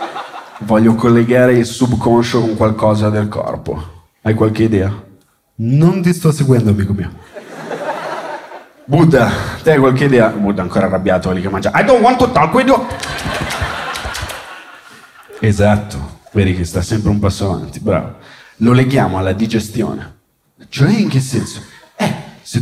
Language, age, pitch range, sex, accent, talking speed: Italian, 30-49, 105-145 Hz, male, native, 140 wpm